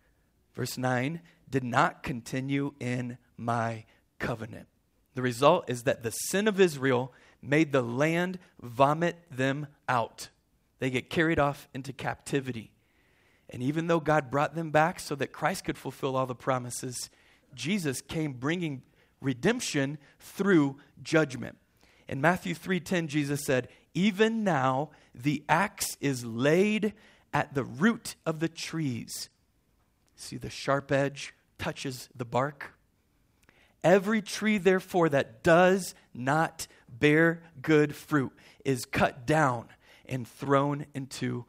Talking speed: 125 wpm